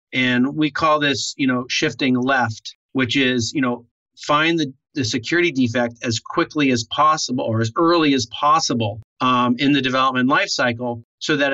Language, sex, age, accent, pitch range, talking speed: English, male, 40-59, American, 120-140 Hz, 170 wpm